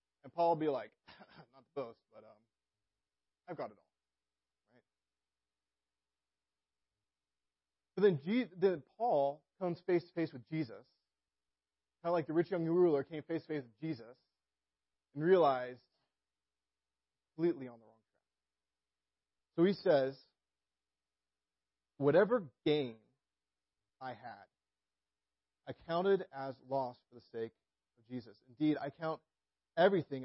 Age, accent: 30-49, American